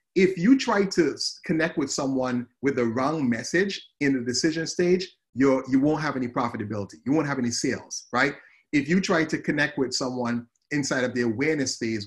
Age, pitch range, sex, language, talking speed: 30-49, 120-150 Hz, male, English, 190 wpm